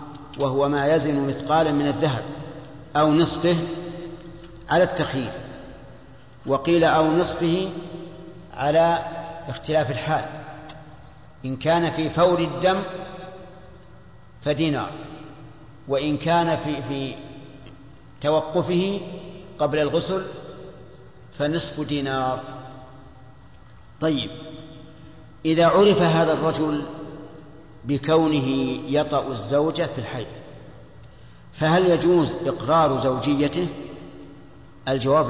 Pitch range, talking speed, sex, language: 140-165 Hz, 80 wpm, male, Arabic